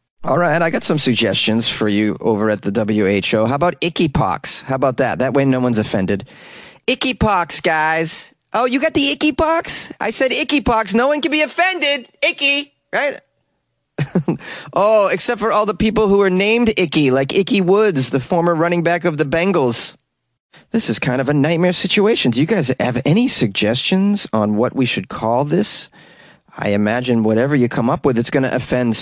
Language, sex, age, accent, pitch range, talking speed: English, male, 30-49, American, 120-185 Hz, 195 wpm